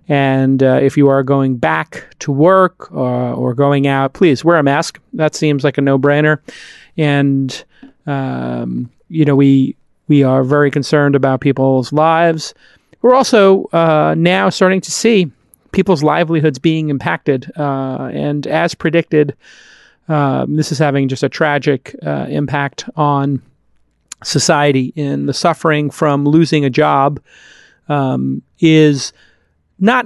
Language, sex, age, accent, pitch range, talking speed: English, male, 40-59, American, 140-165 Hz, 140 wpm